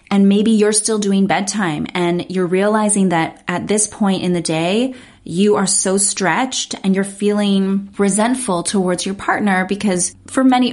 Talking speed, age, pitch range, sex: 170 wpm, 20-39, 180-220 Hz, female